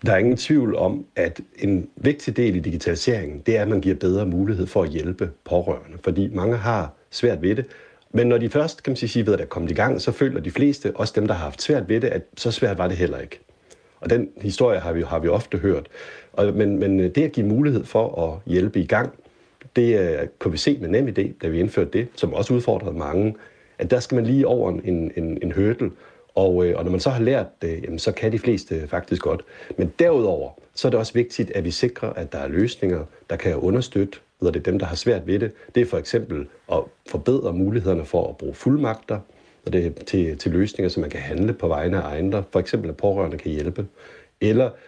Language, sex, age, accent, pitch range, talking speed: Danish, male, 60-79, native, 85-120 Hz, 235 wpm